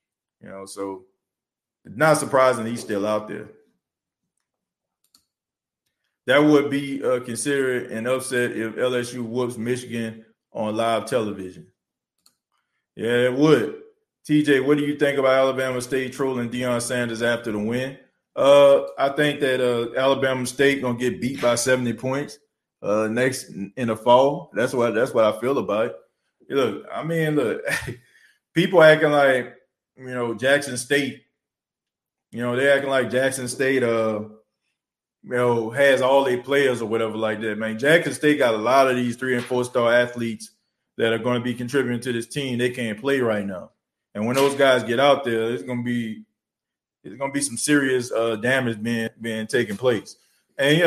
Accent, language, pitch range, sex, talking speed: American, English, 115-140 Hz, male, 170 wpm